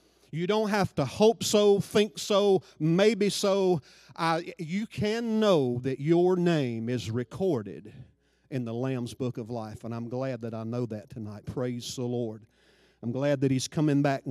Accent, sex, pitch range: American, male, 115-145 Hz